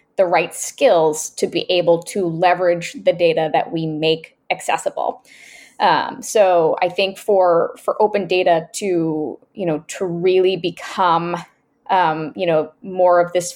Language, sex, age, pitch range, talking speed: English, female, 20-39, 170-195 Hz, 150 wpm